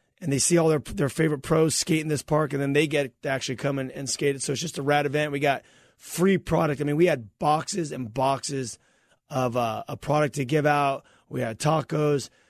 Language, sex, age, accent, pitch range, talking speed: English, male, 30-49, American, 130-150 Hz, 235 wpm